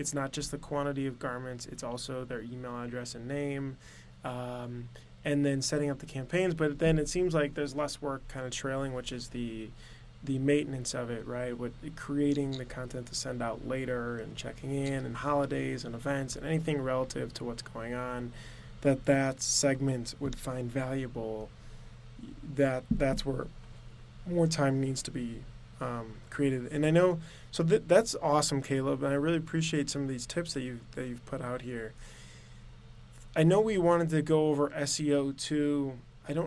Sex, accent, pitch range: male, American, 125-150 Hz